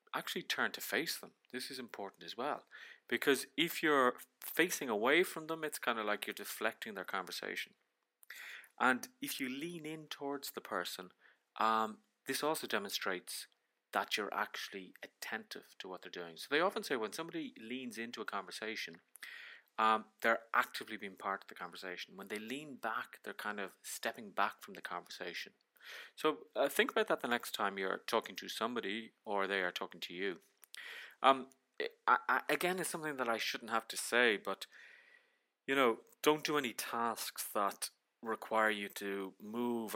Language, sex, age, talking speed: English, male, 30-49, 175 wpm